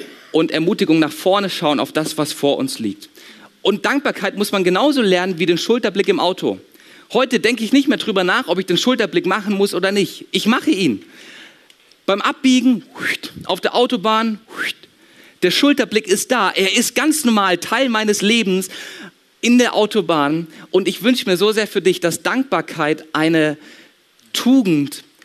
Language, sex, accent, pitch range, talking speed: German, male, German, 160-235 Hz, 170 wpm